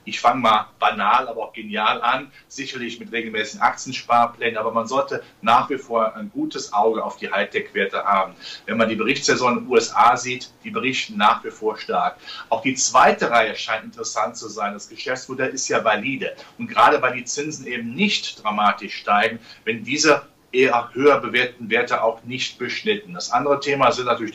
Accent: German